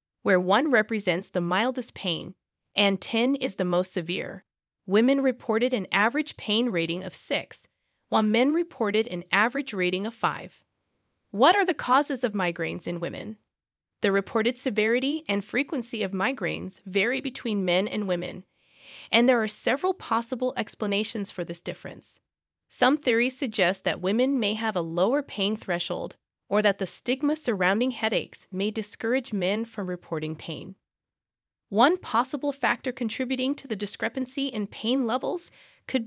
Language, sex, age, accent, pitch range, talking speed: English, female, 20-39, American, 190-260 Hz, 150 wpm